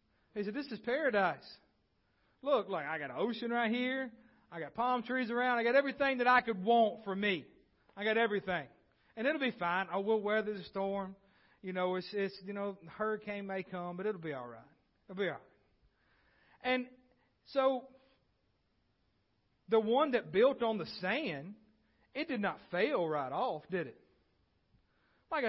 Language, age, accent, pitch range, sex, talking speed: English, 40-59, American, 185-235 Hz, male, 180 wpm